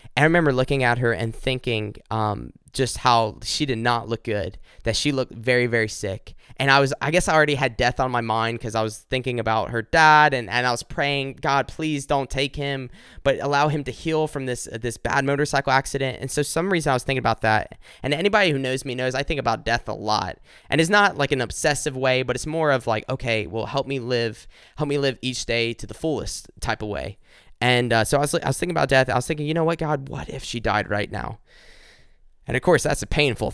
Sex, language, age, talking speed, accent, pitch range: male, English, 10-29, 250 wpm, American, 115-140 Hz